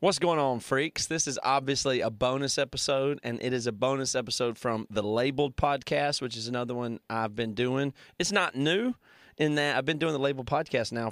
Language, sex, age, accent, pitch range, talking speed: English, male, 30-49, American, 120-145 Hz, 210 wpm